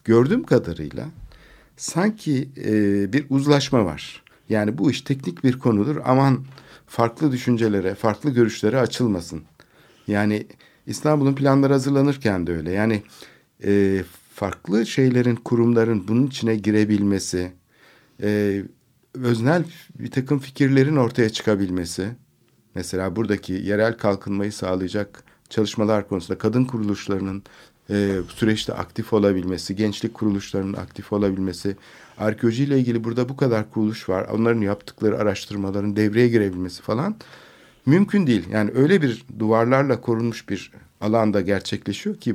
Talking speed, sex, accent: 115 wpm, male, native